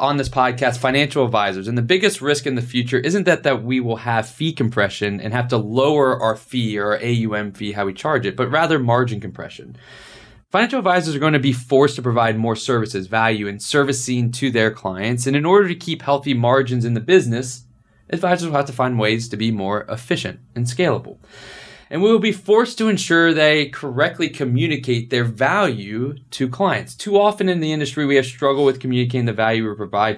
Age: 20-39